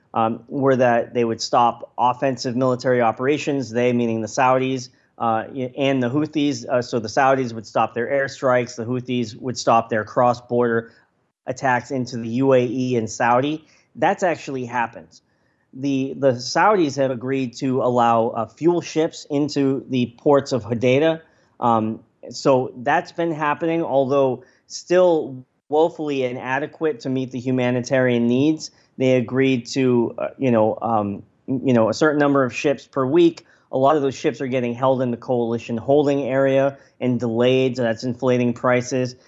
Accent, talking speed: American, 160 wpm